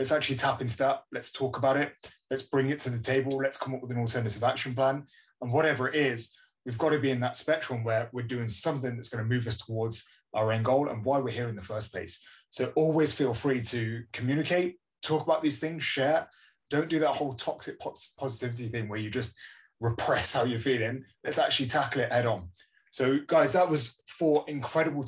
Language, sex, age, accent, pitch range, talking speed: English, male, 20-39, British, 115-145 Hz, 220 wpm